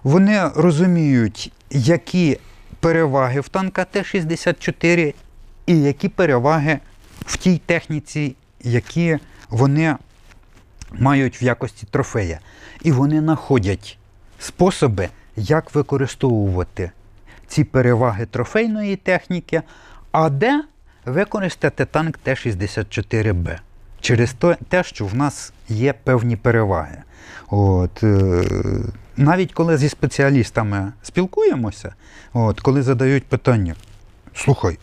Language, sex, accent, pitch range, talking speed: Ukrainian, male, native, 105-165 Hz, 90 wpm